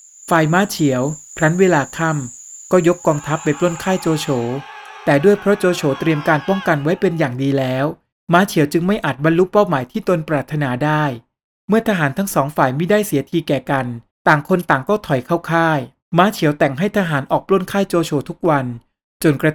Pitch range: 140-185 Hz